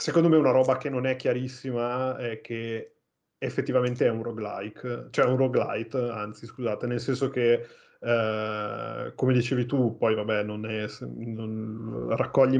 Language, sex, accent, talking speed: Italian, male, native, 150 wpm